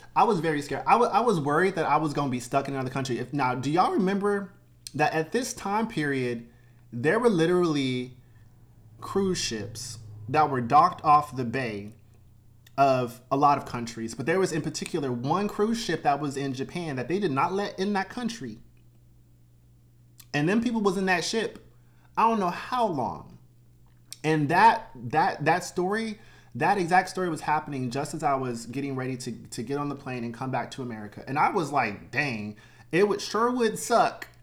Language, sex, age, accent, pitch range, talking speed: English, male, 30-49, American, 120-170 Hz, 195 wpm